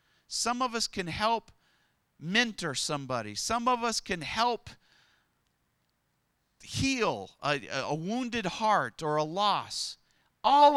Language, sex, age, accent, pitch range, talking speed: English, male, 40-59, American, 120-170 Hz, 115 wpm